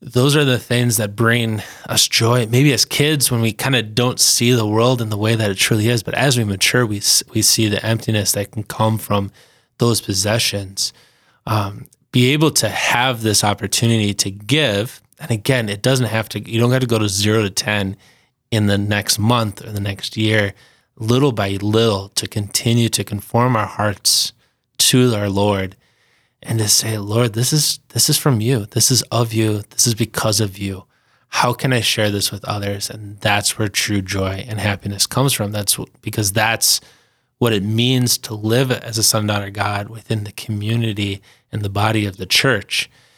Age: 20-39